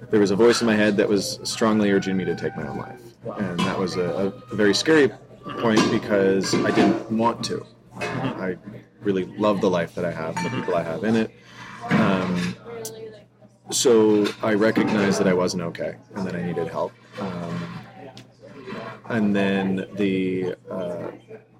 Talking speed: 175 wpm